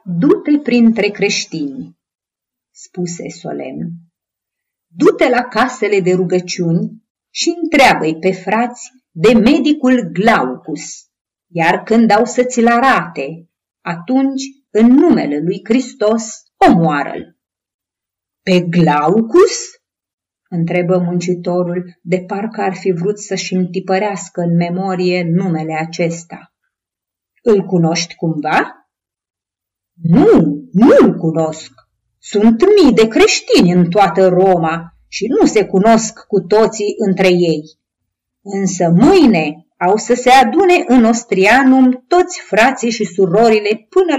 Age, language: 30-49, Romanian